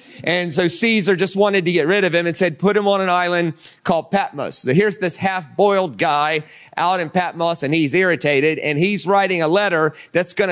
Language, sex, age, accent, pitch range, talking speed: English, male, 30-49, American, 170-205 Hz, 210 wpm